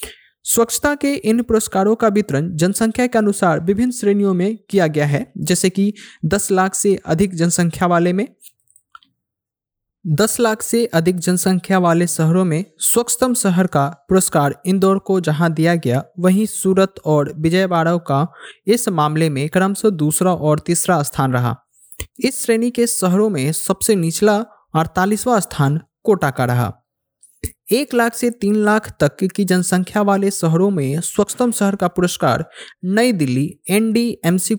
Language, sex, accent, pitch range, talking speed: Hindi, male, native, 170-225 Hz, 145 wpm